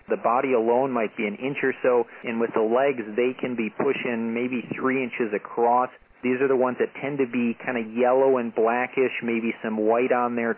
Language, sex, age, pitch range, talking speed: English, male, 40-59, 115-135 Hz, 220 wpm